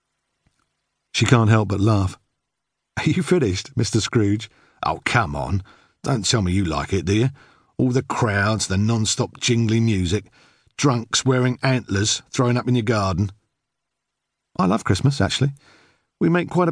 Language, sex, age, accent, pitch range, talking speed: English, male, 50-69, British, 100-145 Hz, 155 wpm